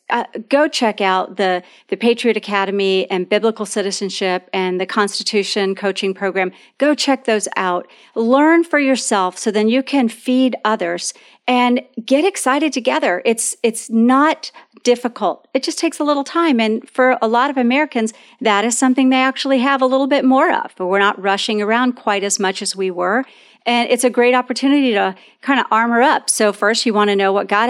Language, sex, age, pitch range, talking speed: English, female, 40-59, 210-260 Hz, 190 wpm